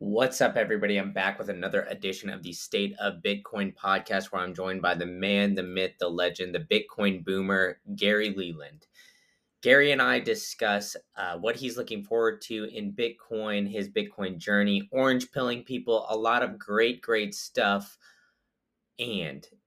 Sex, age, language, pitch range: male, 20-39, English, 95-115 Hz